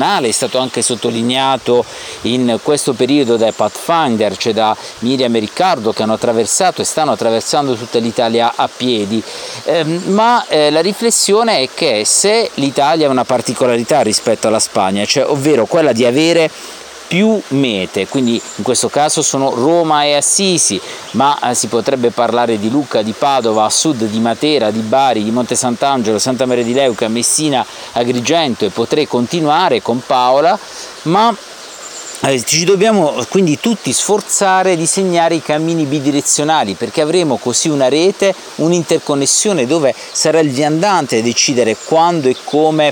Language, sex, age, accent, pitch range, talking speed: Italian, male, 50-69, native, 115-160 Hz, 150 wpm